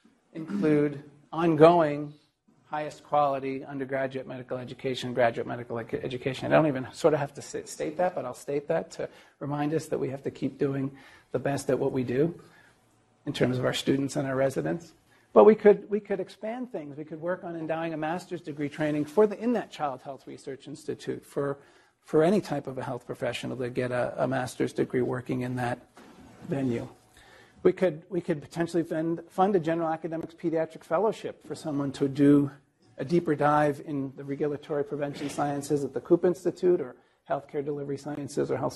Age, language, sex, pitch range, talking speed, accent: 40-59, English, male, 135-165 Hz, 190 wpm, American